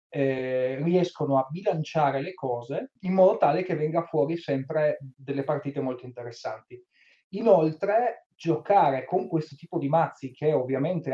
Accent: native